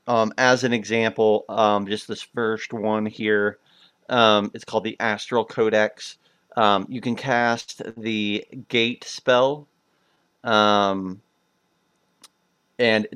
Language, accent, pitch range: English, American, 105-125 Hz